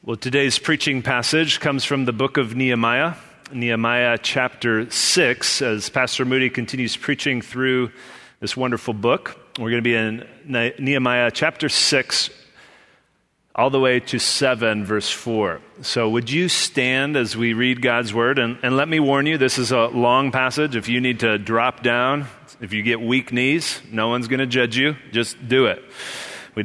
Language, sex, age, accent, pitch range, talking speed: English, male, 30-49, American, 115-140 Hz, 175 wpm